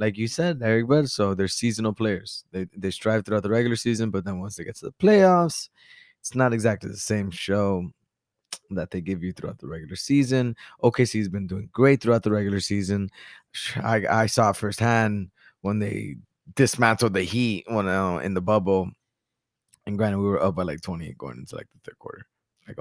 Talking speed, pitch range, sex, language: 205 wpm, 105-130 Hz, male, English